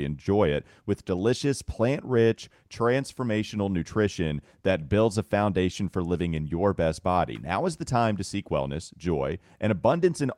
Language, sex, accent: English, male, American